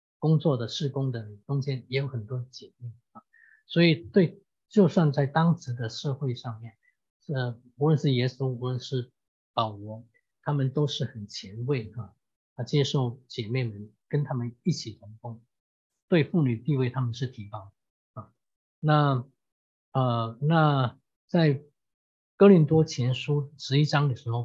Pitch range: 115-145 Hz